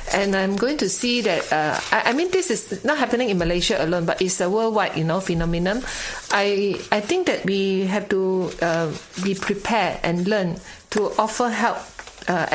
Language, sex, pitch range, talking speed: English, female, 175-215 Hz, 190 wpm